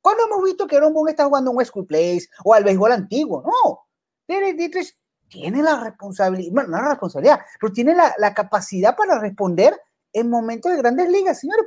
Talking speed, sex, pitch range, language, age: 195 wpm, male, 195-310 Hz, English, 30-49